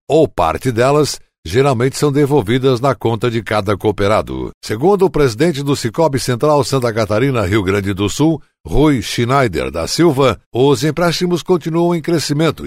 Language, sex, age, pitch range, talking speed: Portuguese, male, 60-79, 110-150 Hz, 150 wpm